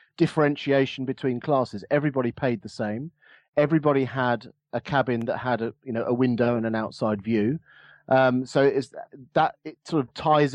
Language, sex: English, male